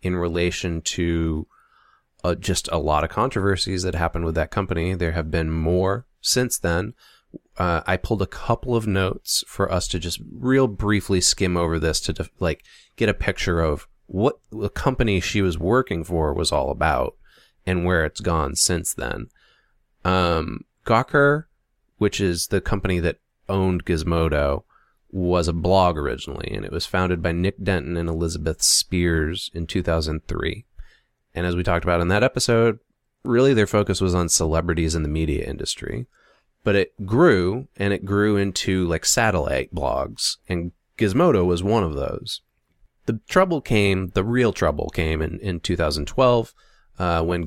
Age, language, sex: 30-49, English, male